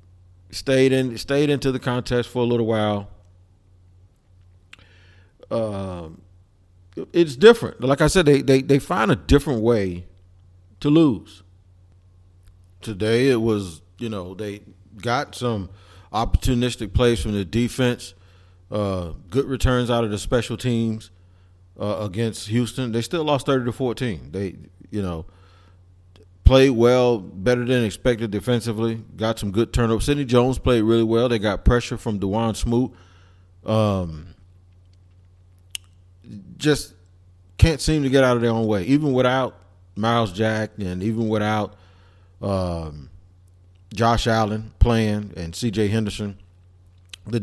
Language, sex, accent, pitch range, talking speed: English, male, American, 90-120 Hz, 135 wpm